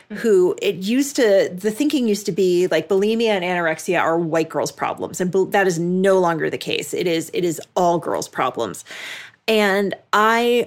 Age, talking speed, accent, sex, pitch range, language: 30-49, 180 wpm, American, female, 165-210 Hz, English